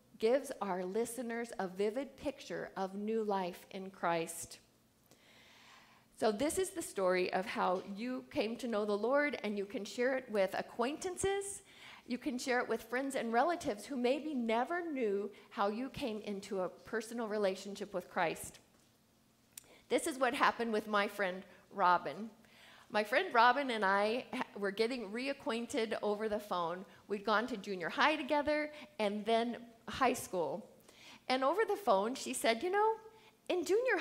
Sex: female